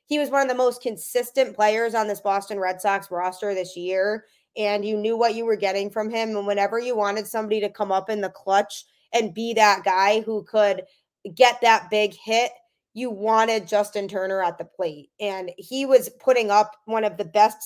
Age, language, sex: 20-39, English, female